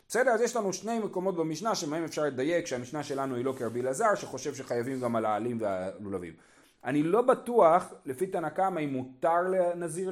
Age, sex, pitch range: 30-49, male, 130-190 Hz